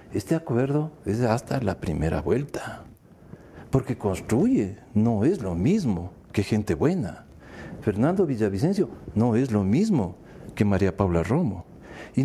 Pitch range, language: 110-170 Hz, English